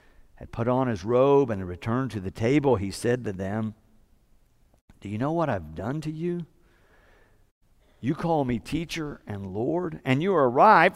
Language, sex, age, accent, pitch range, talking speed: English, male, 50-69, American, 120-180 Hz, 175 wpm